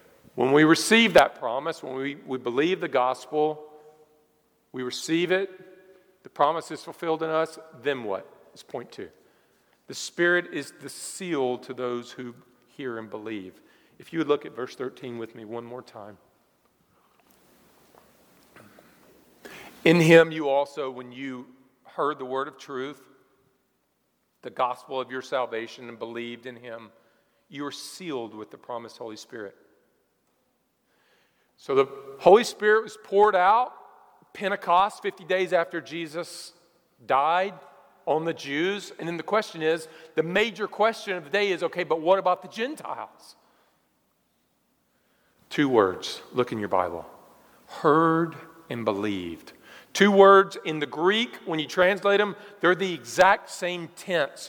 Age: 50-69